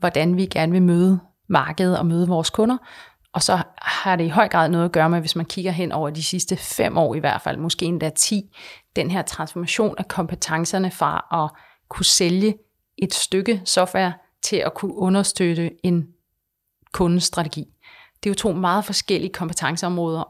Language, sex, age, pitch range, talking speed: Danish, female, 30-49, 170-200 Hz, 180 wpm